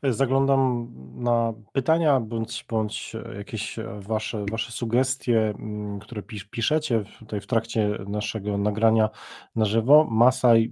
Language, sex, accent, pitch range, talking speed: Polish, male, native, 110-130 Hz, 110 wpm